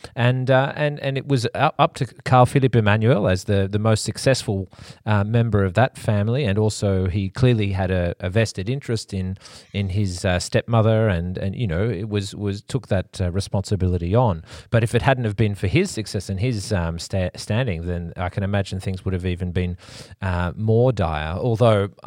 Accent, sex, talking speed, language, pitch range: Australian, male, 200 wpm, English, 95-115 Hz